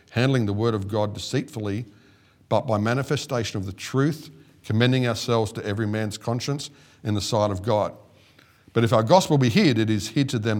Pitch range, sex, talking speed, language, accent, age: 110-135 Hz, male, 190 wpm, English, Australian, 50-69